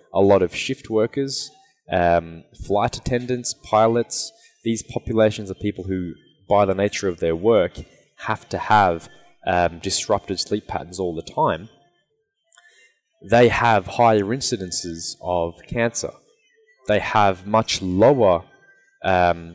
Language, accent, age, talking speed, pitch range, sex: Polish, Australian, 20-39, 125 wpm, 90-120 Hz, male